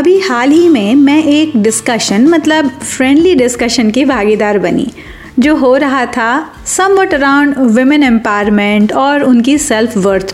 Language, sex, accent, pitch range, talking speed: Hindi, female, native, 220-310 Hz, 145 wpm